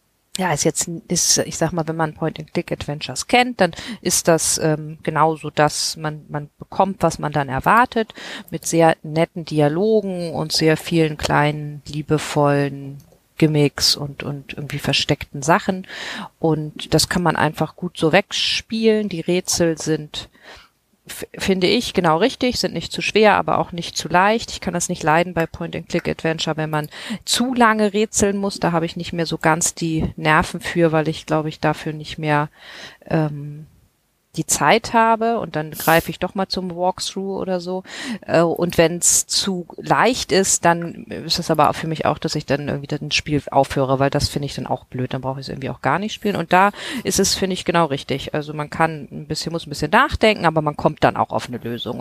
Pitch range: 145-180 Hz